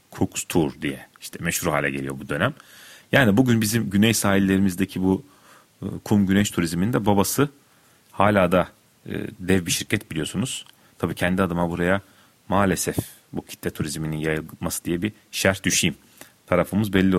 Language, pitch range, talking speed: Turkish, 85-100 Hz, 140 wpm